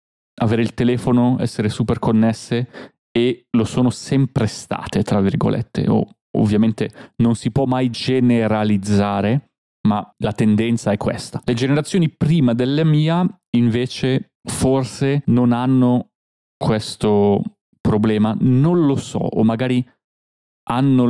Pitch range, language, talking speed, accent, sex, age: 110-130 Hz, Italian, 120 wpm, native, male, 30-49